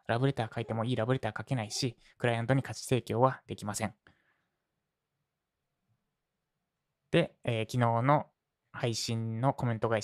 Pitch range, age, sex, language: 110-145 Hz, 20-39, male, Japanese